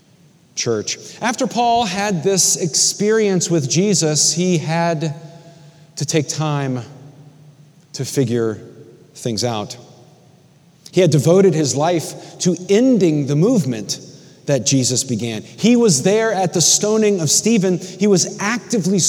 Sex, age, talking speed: male, 40-59, 125 wpm